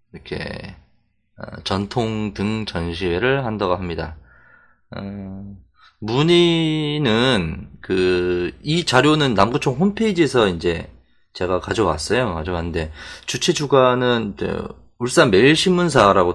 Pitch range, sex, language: 85-135 Hz, male, Korean